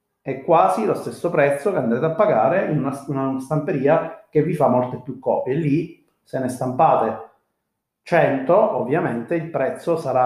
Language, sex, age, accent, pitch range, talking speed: Italian, male, 30-49, native, 125-165 Hz, 165 wpm